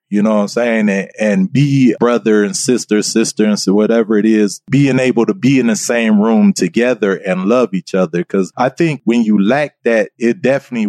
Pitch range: 110-145 Hz